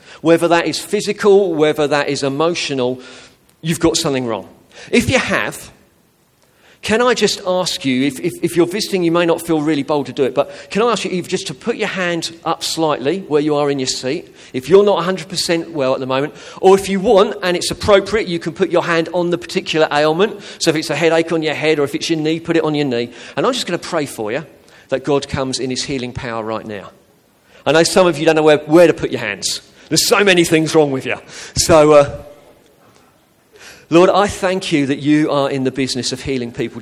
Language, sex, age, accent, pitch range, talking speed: English, male, 40-59, British, 130-170 Hz, 240 wpm